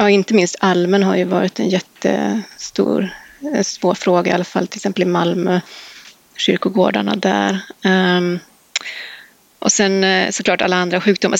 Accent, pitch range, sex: native, 185-210 Hz, female